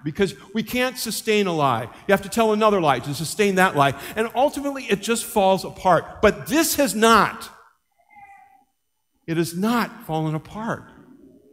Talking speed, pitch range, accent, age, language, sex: 160 wpm, 160-225 Hz, American, 50-69, English, male